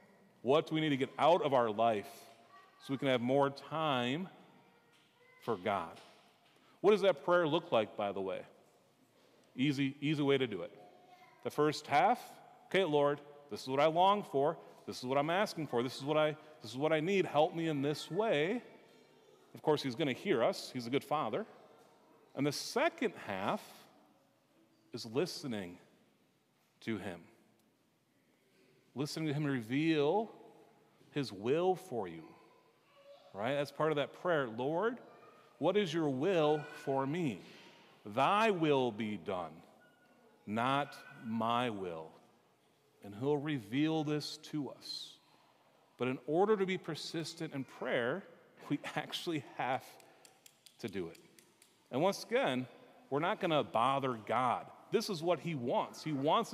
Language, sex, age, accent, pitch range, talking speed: English, male, 40-59, American, 135-170 Hz, 155 wpm